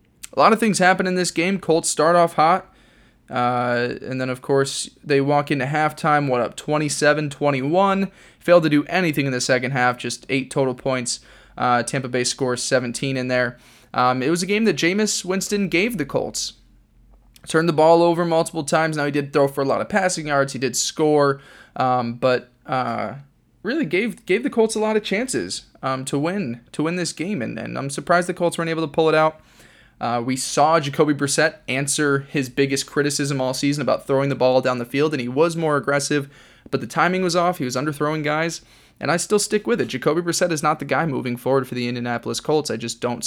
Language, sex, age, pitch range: English, male, 20-39, 130-165 Hz